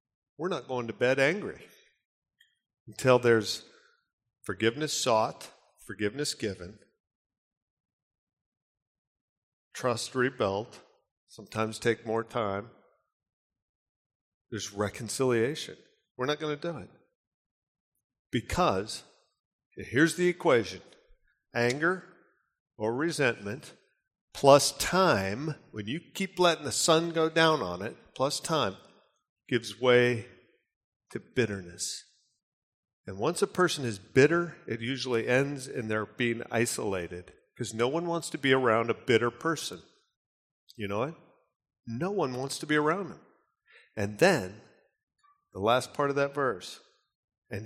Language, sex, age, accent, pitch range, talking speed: English, male, 50-69, American, 115-160 Hz, 115 wpm